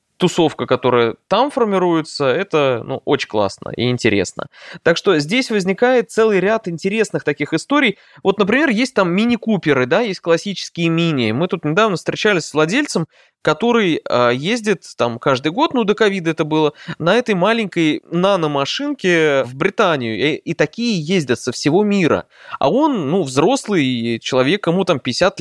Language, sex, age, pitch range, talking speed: Russian, male, 20-39, 135-200 Hz, 155 wpm